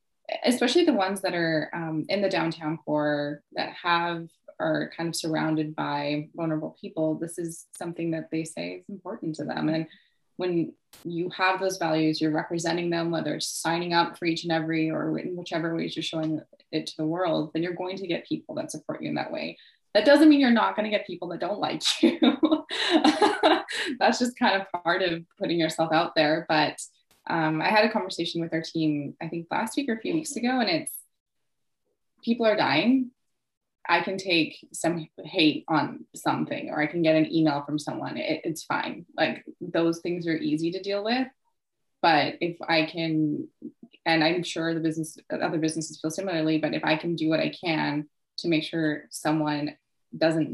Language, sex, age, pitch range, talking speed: English, female, 20-39, 155-195 Hz, 195 wpm